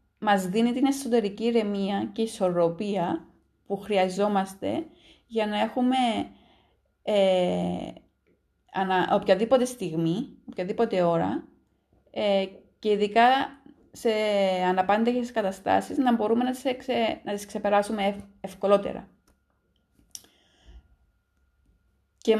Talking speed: 95 wpm